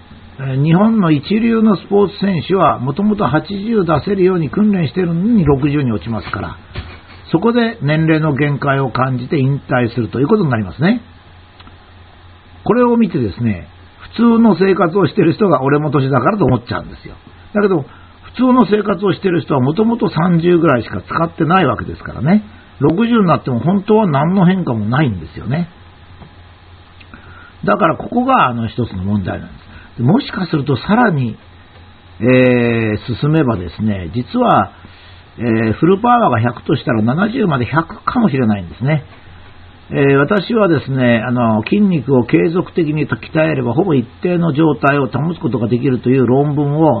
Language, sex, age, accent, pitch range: Japanese, male, 60-79, native, 105-175 Hz